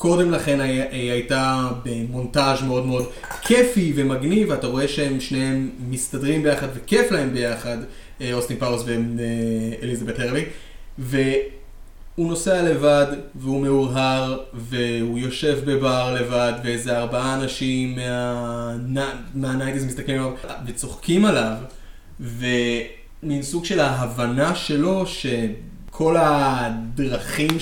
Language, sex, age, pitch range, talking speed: Hebrew, male, 20-39, 120-145 Hz, 100 wpm